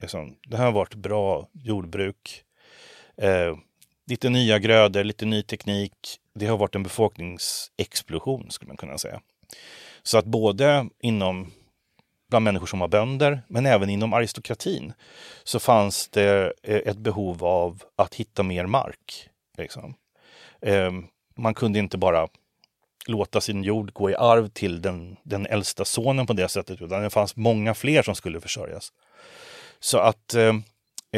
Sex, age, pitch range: male, 30-49, 100-120 Hz